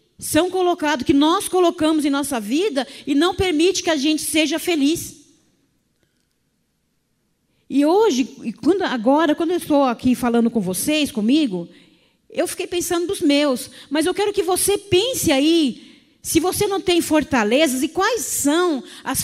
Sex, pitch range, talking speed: female, 260-330 Hz, 150 wpm